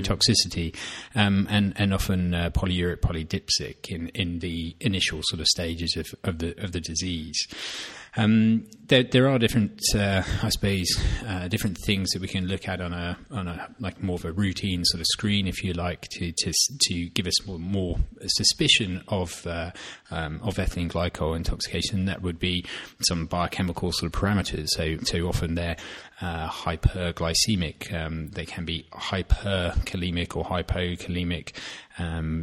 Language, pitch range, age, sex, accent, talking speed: English, 85-95 Hz, 30-49, male, British, 165 wpm